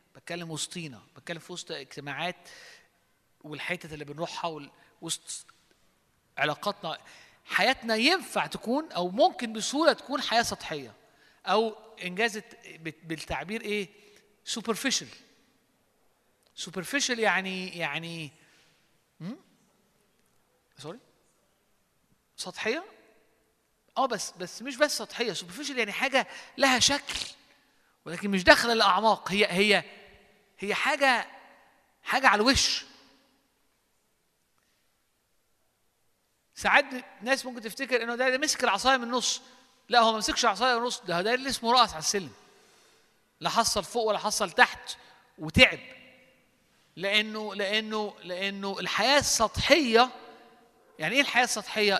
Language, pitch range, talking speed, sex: Arabic, 185-250 Hz, 105 wpm, male